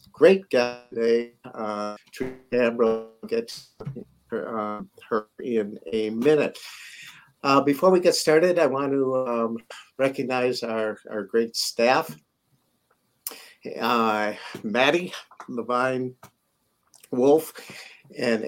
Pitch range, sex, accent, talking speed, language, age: 110-130 Hz, male, American, 95 wpm, English, 50-69